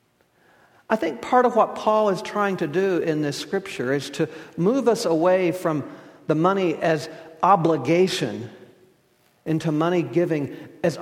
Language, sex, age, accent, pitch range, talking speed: English, male, 50-69, American, 145-195 Hz, 145 wpm